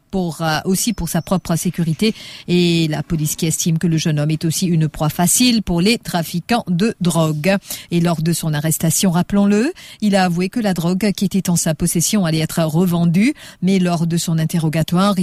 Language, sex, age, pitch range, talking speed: English, female, 50-69, 170-205 Hz, 200 wpm